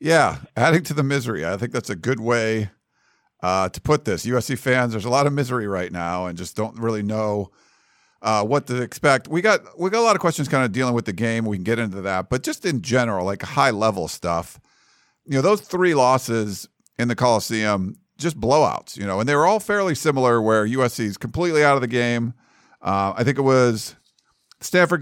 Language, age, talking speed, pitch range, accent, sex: English, 50-69, 220 wpm, 110-140 Hz, American, male